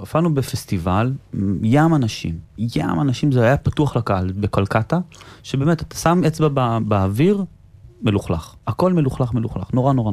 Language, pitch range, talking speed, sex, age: Hebrew, 105-150 Hz, 135 wpm, male, 20-39